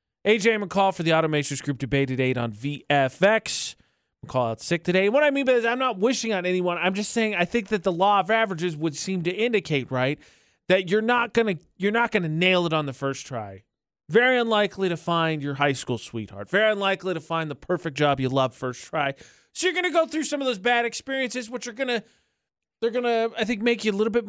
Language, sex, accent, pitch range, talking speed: English, male, American, 145-220 Hz, 245 wpm